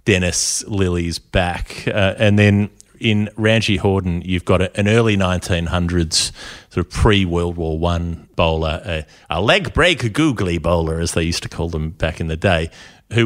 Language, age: English, 30-49